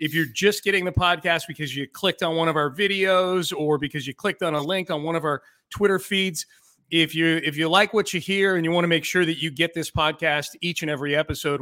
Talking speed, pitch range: 260 wpm, 145-175 Hz